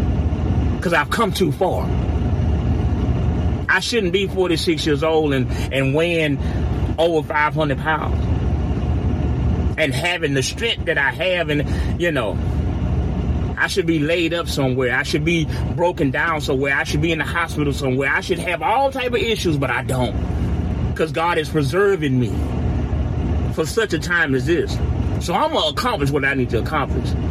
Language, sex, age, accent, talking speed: English, male, 30-49, American, 170 wpm